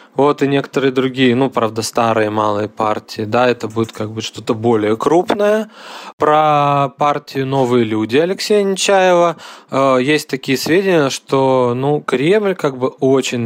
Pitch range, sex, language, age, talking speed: 115-155 Hz, male, Russian, 20-39, 150 wpm